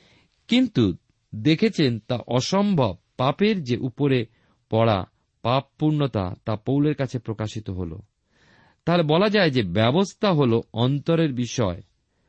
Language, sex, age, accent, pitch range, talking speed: Bengali, male, 50-69, native, 105-155 Hz, 80 wpm